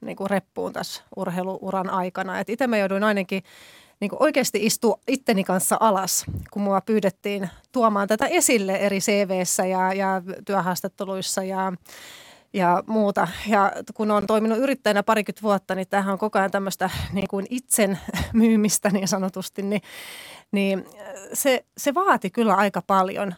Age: 30-49